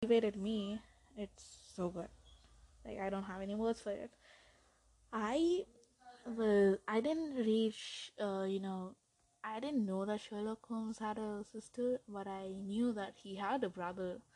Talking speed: 155 wpm